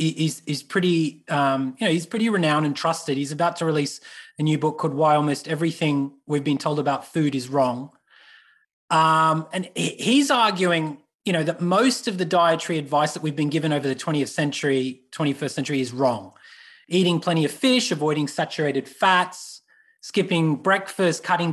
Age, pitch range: 20-39, 145-180 Hz